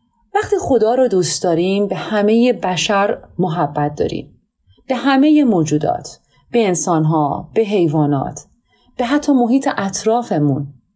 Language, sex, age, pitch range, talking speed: Persian, female, 30-49, 175-230 Hz, 115 wpm